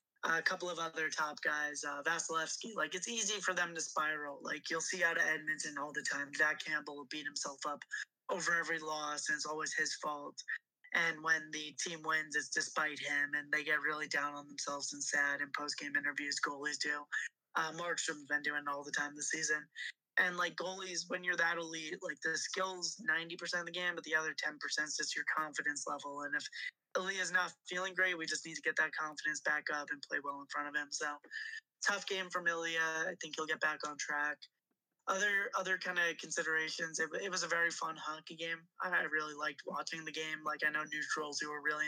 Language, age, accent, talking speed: English, 20-39, American, 220 wpm